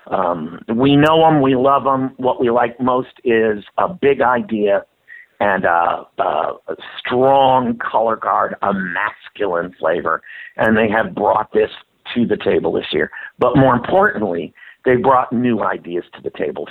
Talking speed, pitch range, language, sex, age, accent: 160 wpm, 125-165 Hz, English, male, 50-69, American